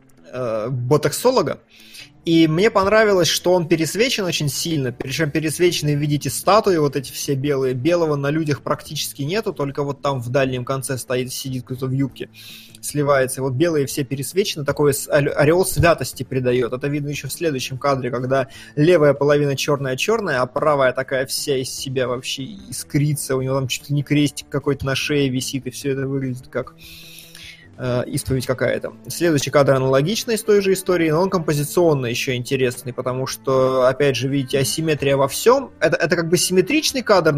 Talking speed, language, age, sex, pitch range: 170 wpm, Russian, 20-39, male, 130-160 Hz